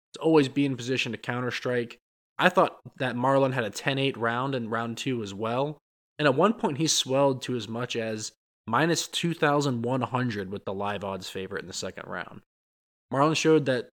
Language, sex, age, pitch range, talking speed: English, male, 20-39, 115-140 Hz, 195 wpm